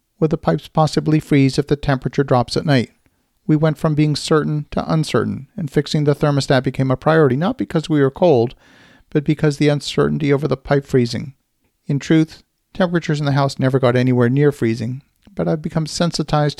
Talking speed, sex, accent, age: 190 wpm, male, American, 40-59